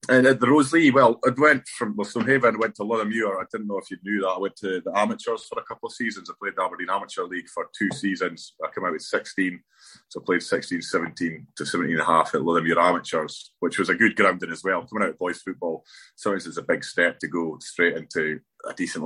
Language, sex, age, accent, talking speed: English, male, 30-49, British, 260 wpm